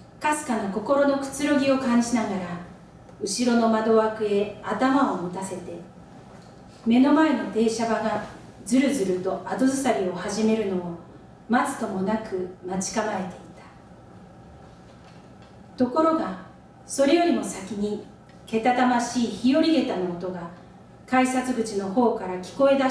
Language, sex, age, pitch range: Japanese, female, 40-59, 185-250 Hz